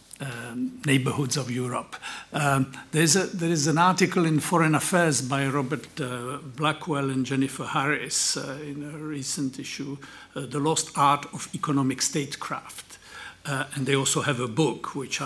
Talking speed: 165 wpm